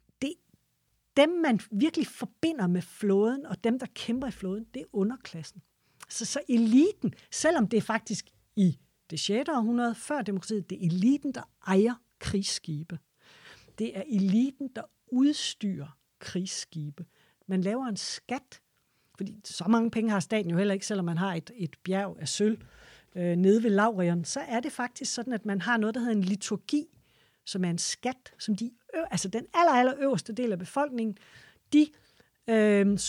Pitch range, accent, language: 185-250 Hz, native, Danish